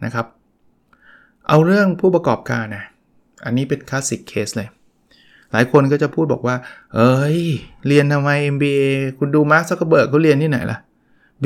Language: Thai